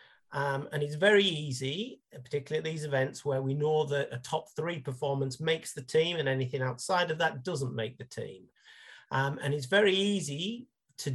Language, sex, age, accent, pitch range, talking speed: English, male, 40-59, British, 130-160 Hz, 190 wpm